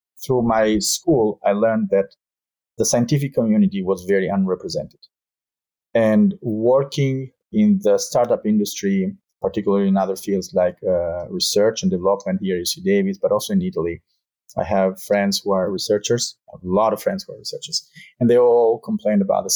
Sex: male